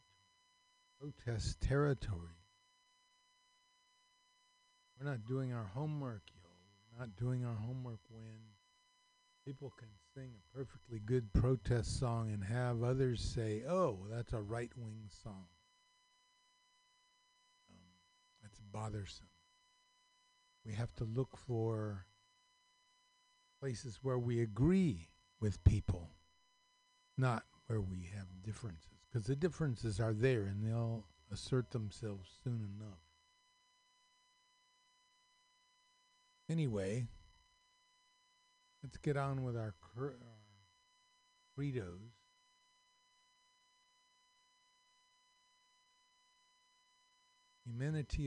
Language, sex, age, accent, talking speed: English, male, 50-69, American, 85 wpm